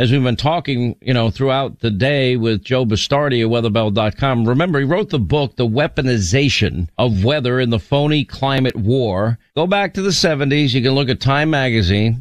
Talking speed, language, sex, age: 190 wpm, English, male, 50-69